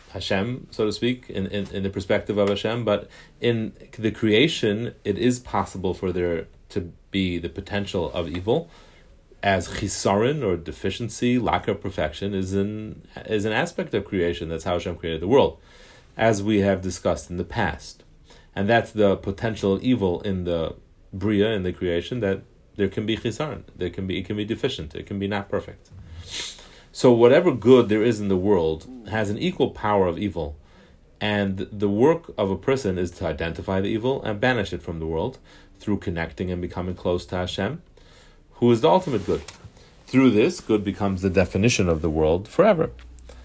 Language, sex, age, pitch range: English, male, 30-49, 90-110 Hz